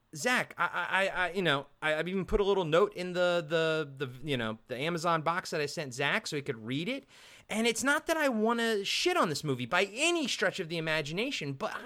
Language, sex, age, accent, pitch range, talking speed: English, male, 30-49, American, 140-215 Hz, 250 wpm